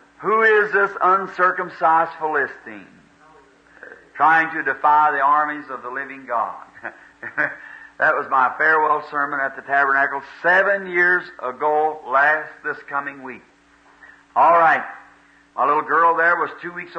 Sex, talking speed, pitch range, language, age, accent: male, 135 wpm, 125-165 Hz, English, 50-69, American